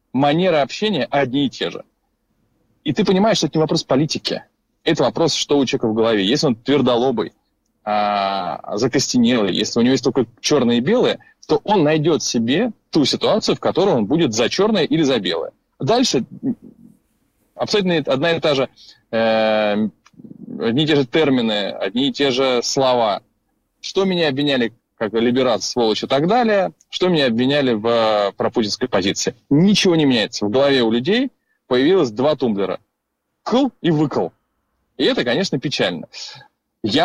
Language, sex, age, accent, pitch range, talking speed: Russian, male, 20-39, native, 110-165 Hz, 155 wpm